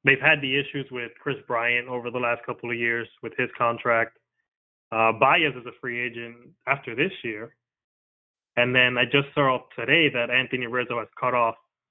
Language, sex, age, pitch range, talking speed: English, male, 20-39, 120-145 Hz, 185 wpm